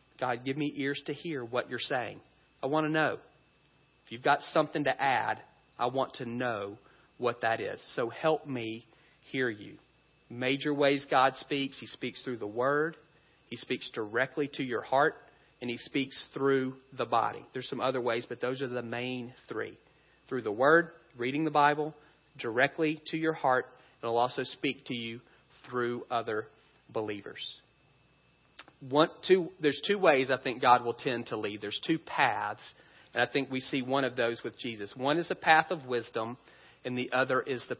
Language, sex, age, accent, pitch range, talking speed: English, male, 40-59, American, 125-155 Hz, 185 wpm